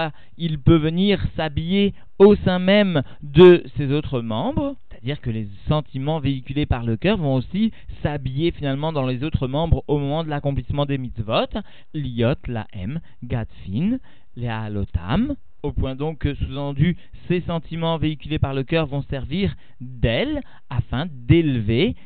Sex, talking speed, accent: male, 145 wpm, French